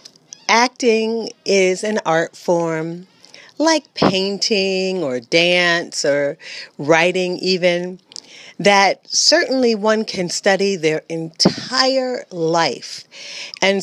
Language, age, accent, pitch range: English, 40-59, American, 160-230 Hz